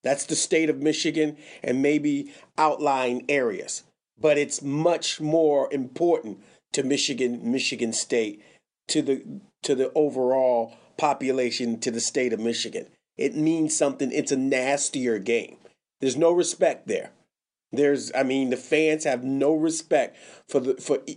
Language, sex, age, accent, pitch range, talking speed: English, male, 40-59, American, 135-155 Hz, 145 wpm